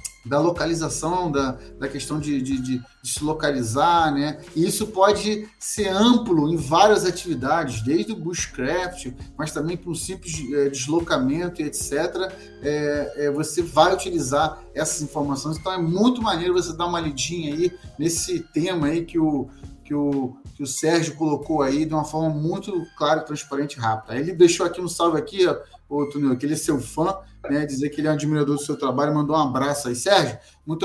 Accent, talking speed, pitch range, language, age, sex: Brazilian, 185 wpm, 145-175 Hz, Portuguese, 30-49, male